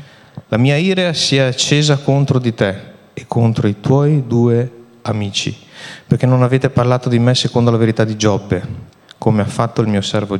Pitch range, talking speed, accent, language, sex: 110-145 Hz, 185 wpm, native, Italian, male